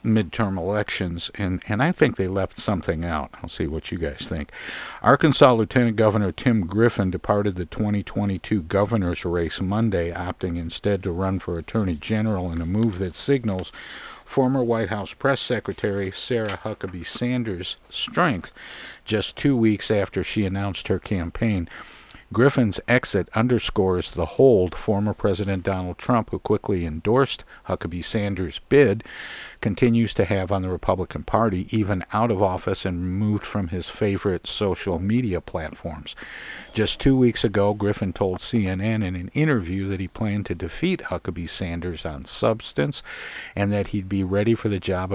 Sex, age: male, 50-69